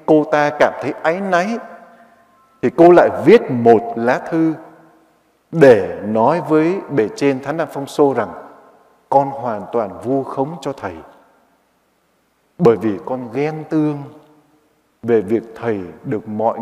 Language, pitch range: Vietnamese, 125-160 Hz